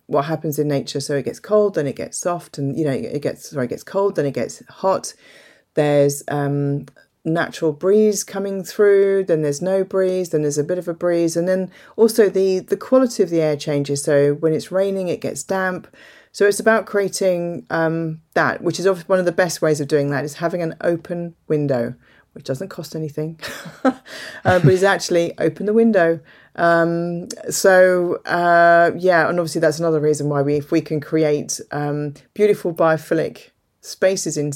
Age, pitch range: 40-59, 150-185 Hz